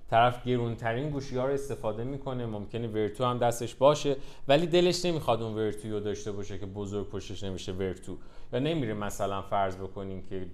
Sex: male